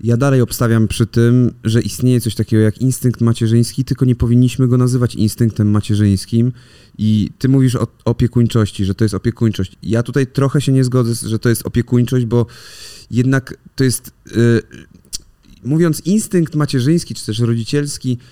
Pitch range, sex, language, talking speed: 120-160 Hz, male, Polish, 155 wpm